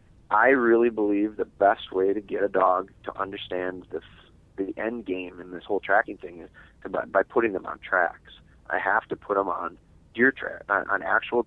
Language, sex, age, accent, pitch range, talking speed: English, male, 30-49, American, 95-135 Hz, 210 wpm